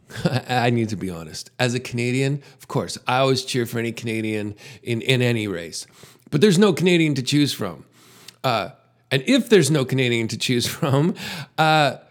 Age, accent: 40-59, American